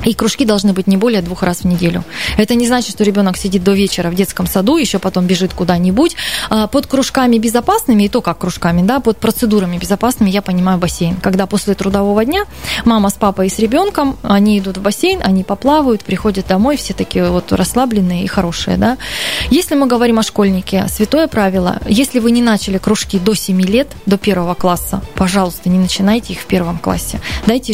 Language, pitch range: Russian, 190-235 Hz